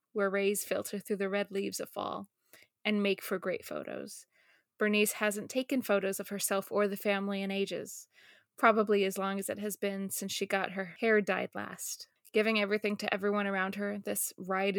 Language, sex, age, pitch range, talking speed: English, female, 20-39, 195-215 Hz, 190 wpm